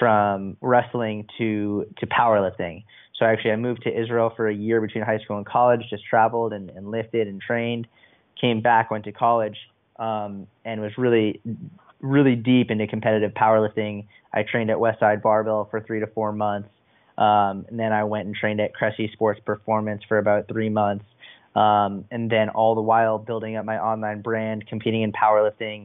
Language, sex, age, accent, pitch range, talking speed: English, male, 20-39, American, 105-115 Hz, 185 wpm